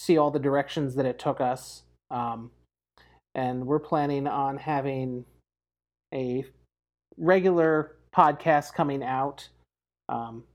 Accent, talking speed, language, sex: American, 115 wpm, English, male